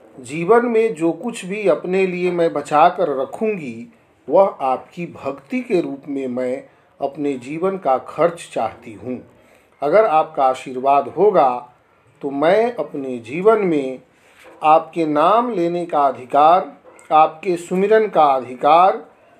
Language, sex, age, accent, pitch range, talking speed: Hindi, male, 50-69, native, 145-205 Hz, 125 wpm